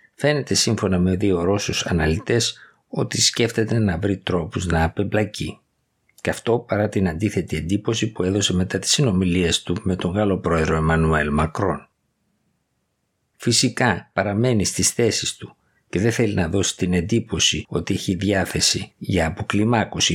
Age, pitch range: 50-69, 85-105 Hz